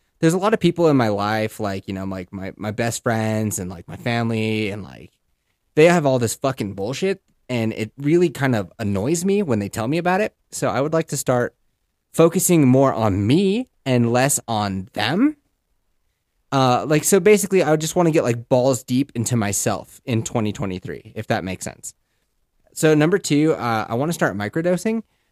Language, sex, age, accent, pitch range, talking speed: English, male, 20-39, American, 110-150 Hz, 200 wpm